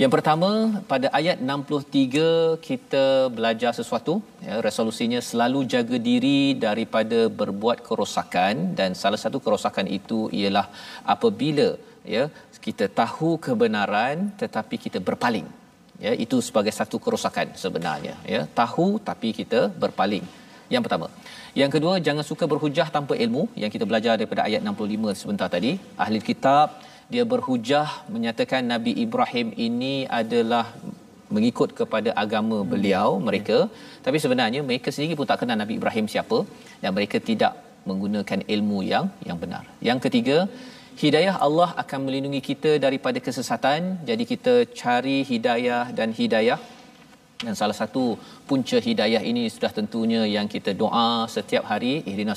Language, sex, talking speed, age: Malayalam, male, 135 wpm, 40-59